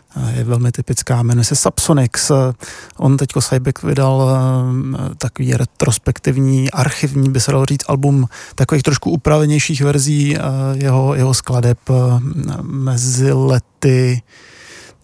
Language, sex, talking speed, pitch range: English, male, 110 wpm, 120-140 Hz